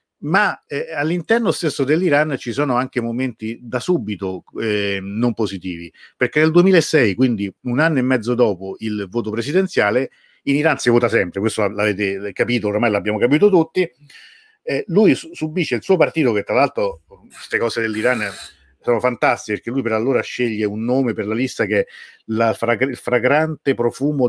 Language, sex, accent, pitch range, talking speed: Italian, male, native, 105-140 Hz, 175 wpm